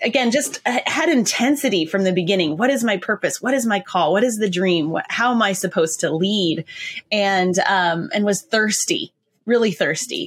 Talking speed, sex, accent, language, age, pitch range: 185 wpm, female, American, English, 20-39, 170-205 Hz